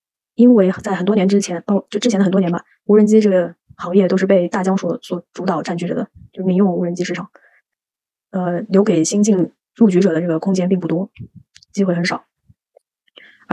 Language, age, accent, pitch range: Chinese, 20-39, native, 180-210 Hz